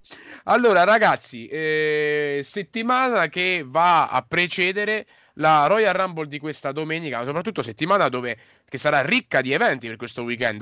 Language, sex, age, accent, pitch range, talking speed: Italian, male, 30-49, native, 120-155 Hz, 145 wpm